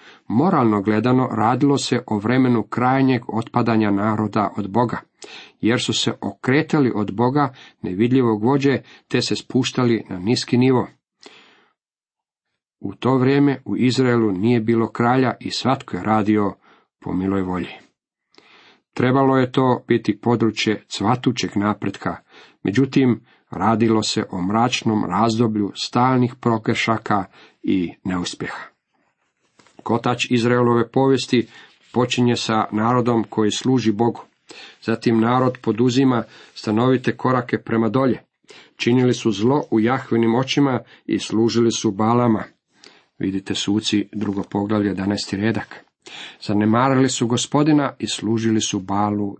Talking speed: 120 wpm